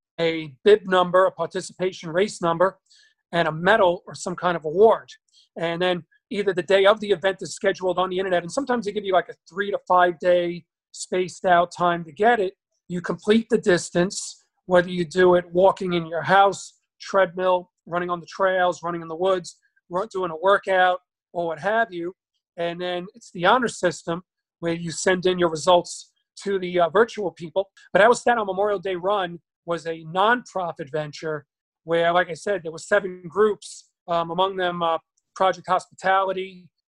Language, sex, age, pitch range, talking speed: English, male, 40-59, 170-190 Hz, 190 wpm